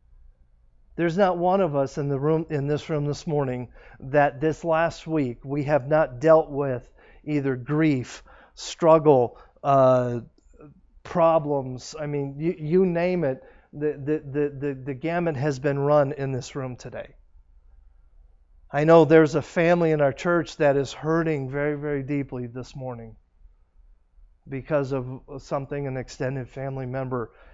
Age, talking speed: 50-69, 150 wpm